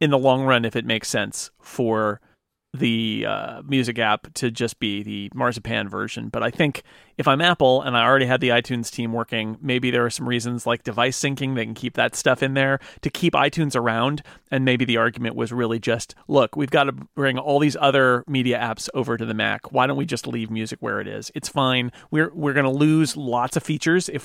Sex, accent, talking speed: male, American, 230 wpm